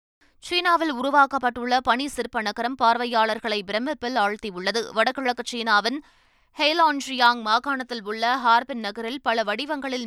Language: Tamil